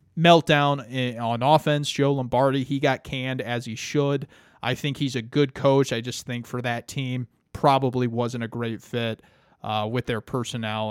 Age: 30-49